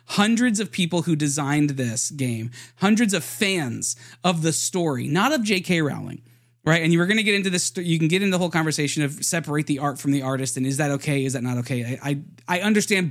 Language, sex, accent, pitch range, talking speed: English, male, American, 125-165 Hz, 240 wpm